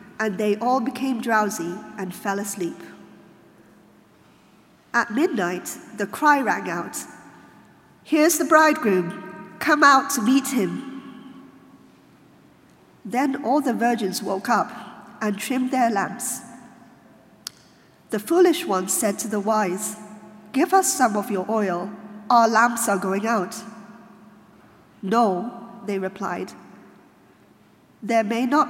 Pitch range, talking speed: 200-255 Hz, 115 wpm